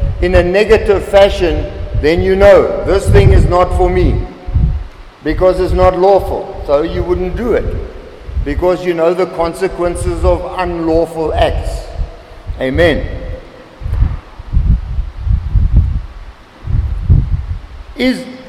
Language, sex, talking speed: English, male, 105 wpm